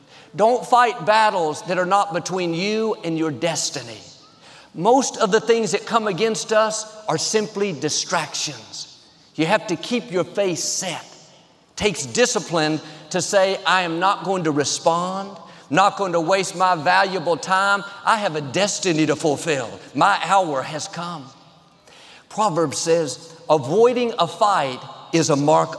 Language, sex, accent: English, male, American